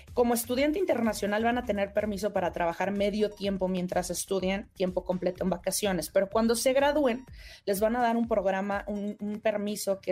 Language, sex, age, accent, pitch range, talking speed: Spanish, female, 30-49, Mexican, 190-225 Hz, 185 wpm